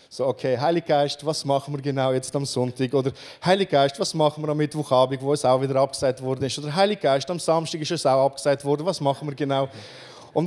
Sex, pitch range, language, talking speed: male, 135-165 Hz, German, 230 wpm